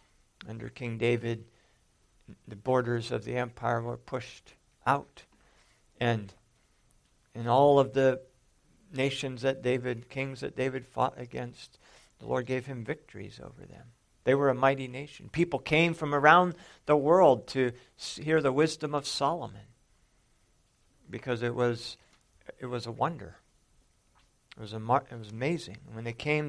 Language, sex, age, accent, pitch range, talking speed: English, male, 50-69, American, 115-140 Hz, 145 wpm